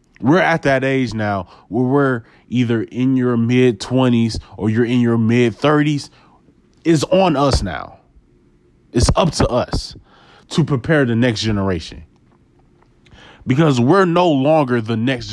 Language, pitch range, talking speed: English, 105-140 Hz, 145 wpm